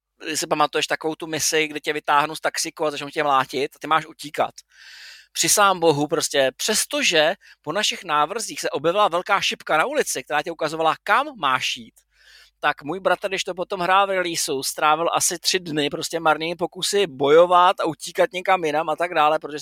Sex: male